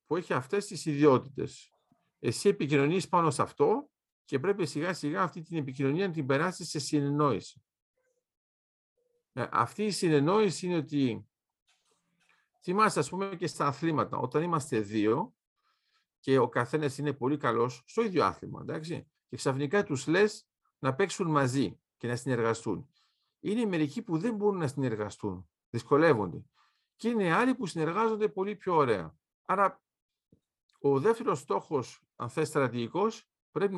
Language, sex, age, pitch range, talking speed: Greek, male, 50-69, 135-195 Hz, 140 wpm